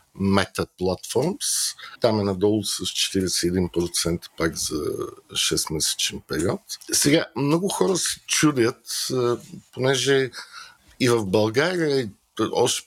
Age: 50-69